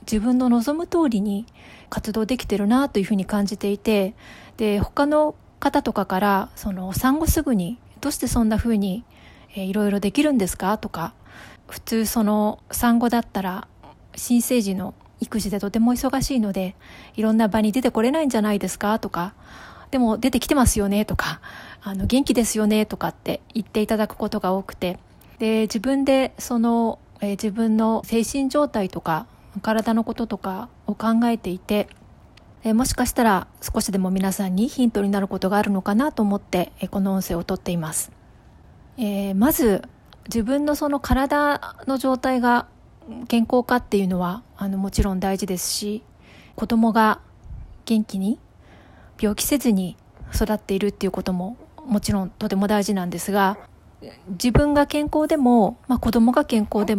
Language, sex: Japanese, female